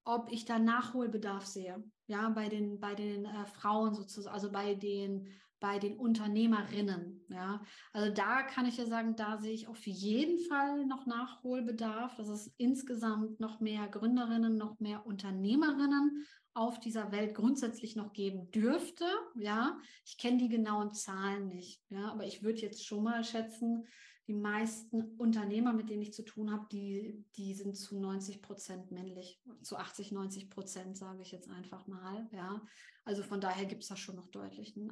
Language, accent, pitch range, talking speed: German, German, 205-235 Hz, 170 wpm